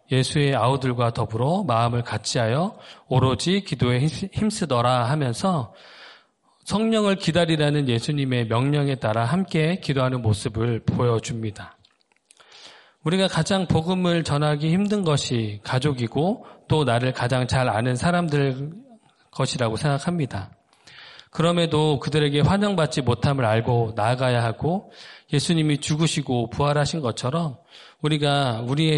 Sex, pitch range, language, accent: male, 120-160 Hz, Korean, native